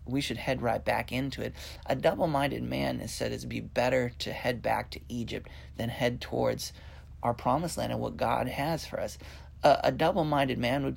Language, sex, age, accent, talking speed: English, male, 30-49, American, 215 wpm